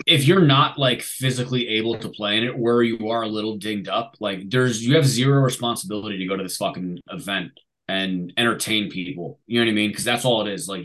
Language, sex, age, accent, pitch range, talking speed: English, male, 20-39, American, 100-120 Hz, 240 wpm